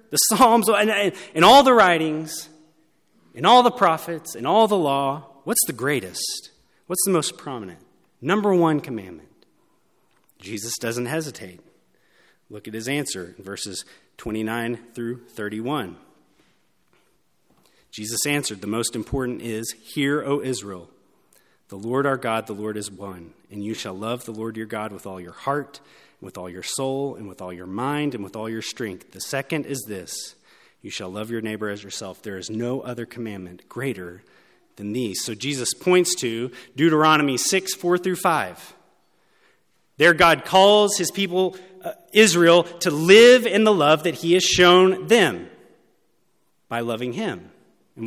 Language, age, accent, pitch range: English, 30-49, American, 110-175 Hz